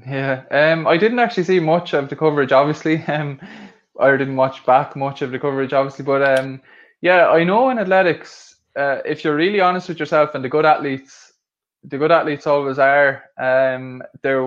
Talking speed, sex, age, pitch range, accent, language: 190 wpm, male, 20-39, 130-150 Hz, Irish, English